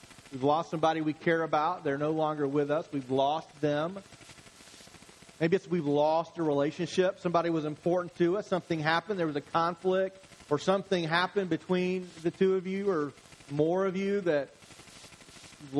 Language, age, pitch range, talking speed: English, 40-59, 160-195 Hz, 170 wpm